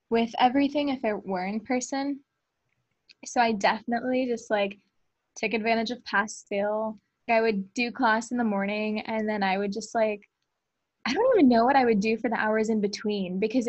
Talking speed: 195 wpm